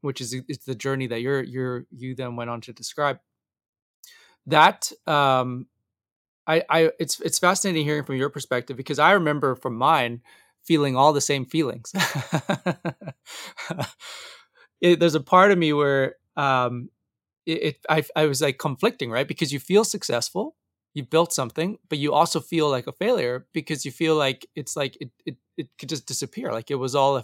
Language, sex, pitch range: English, male, 125-160 Hz